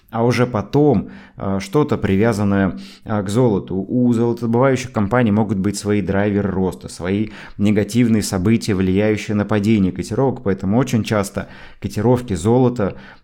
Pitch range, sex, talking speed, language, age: 95-115 Hz, male, 120 wpm, Russian, 20-39